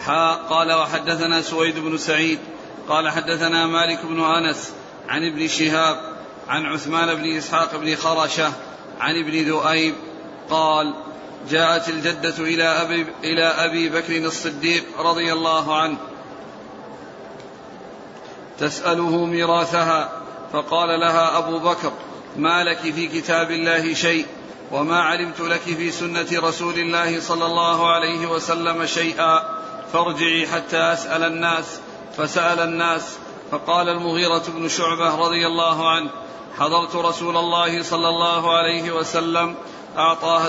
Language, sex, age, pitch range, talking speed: Arabic, male, 40-59, 160-170 Hz, 115 wpm